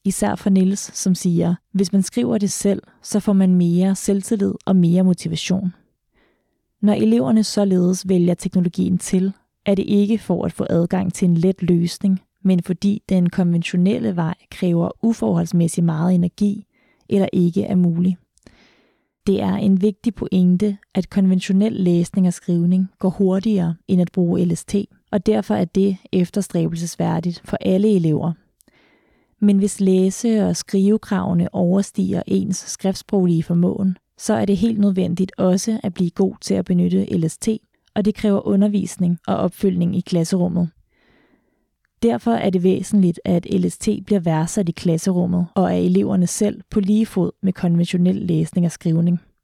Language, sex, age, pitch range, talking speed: Danish, female, 20-39, 175-200 Hz, 150 wpm